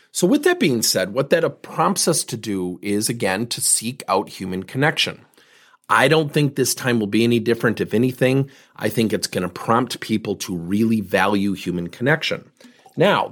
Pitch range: 105-150 Hz